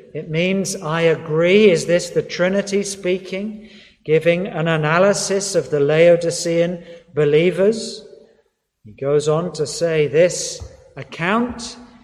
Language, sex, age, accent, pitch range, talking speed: English, male, 50-69, British, 150-195 Hz, 115 wpm